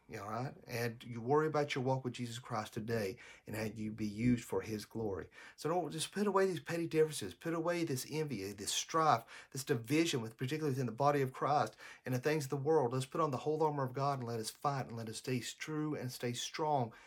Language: English